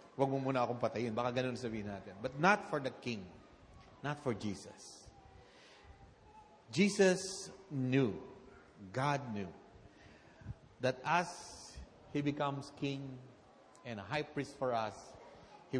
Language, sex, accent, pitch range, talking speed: English, male, Filipino, 100-140 Hz, 120 wpm